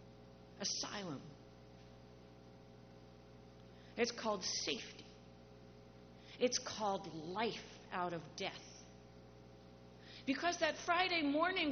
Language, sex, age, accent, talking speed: English, female, 40-59, American, 70 wpm